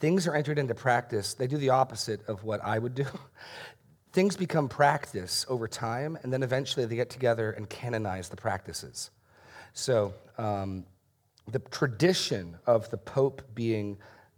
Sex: male